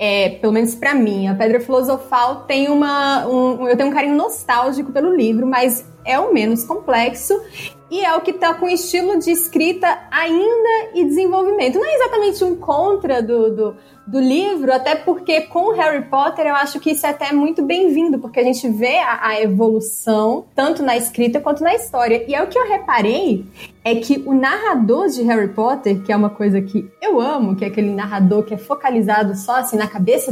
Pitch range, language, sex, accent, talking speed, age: 225-315 Hz, Portuguese, female, Brazilian, 200 wpm, 20-39